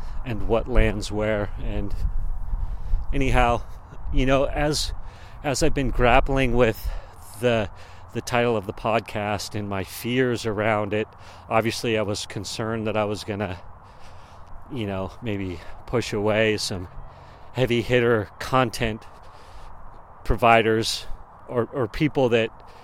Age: 40-59